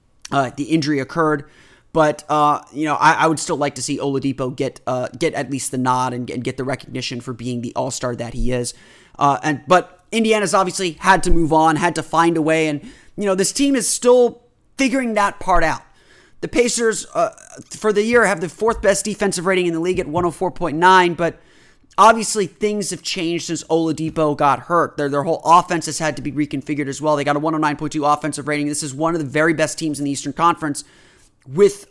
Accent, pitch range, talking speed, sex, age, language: American, 145-195 Hz, 225 wpm, male, 30-49, English